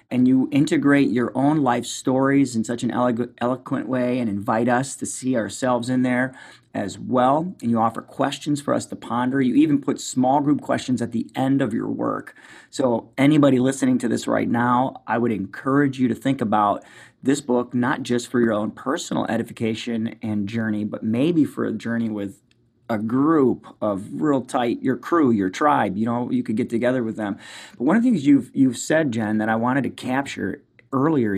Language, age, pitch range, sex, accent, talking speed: English, 30-49, 115-140 Hz, male, American, 200 wpm